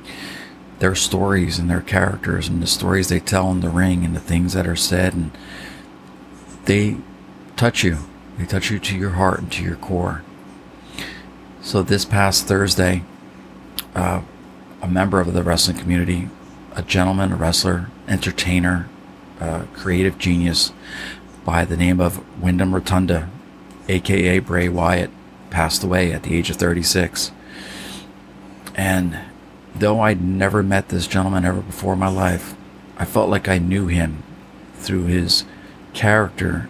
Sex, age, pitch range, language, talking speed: male, 40-59, 90-95 Hz, English, 145 wpm